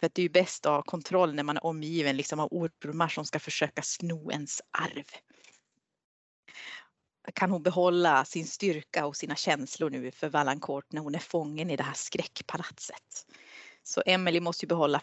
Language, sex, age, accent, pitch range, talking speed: Swedish, female, 30-49, native, 155-230 Hz, 180 wpm